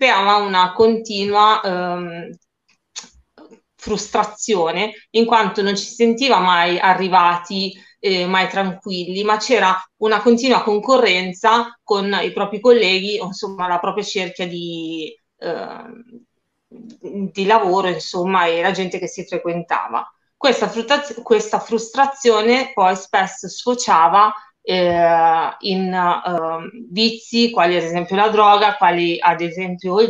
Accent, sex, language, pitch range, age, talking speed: native, female, Italian, 180-225 Hz, 30-49, 115 wpm